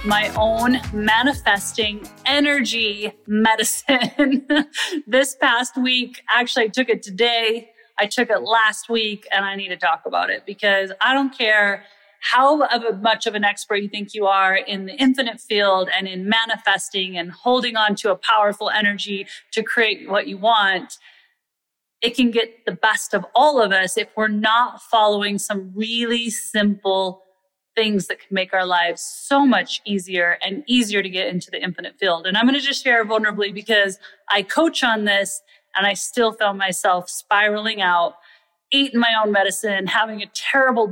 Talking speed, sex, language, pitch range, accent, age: 170 wpm, female, English, 200-235 Hz, American, 30-49